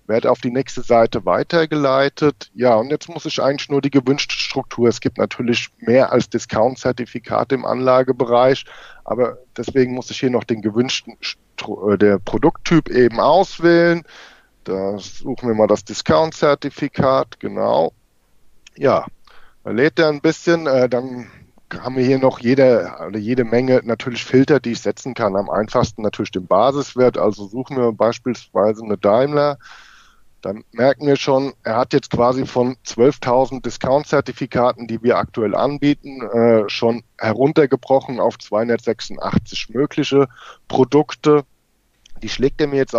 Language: German